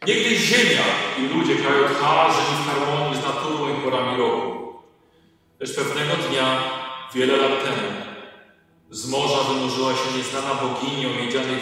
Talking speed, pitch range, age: 150 wpm, 125-160 Hz, 40-59